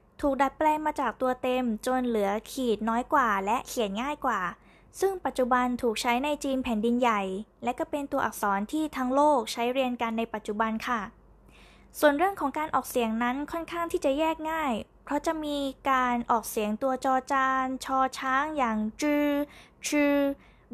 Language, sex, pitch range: Thai, female, 235-290 Hz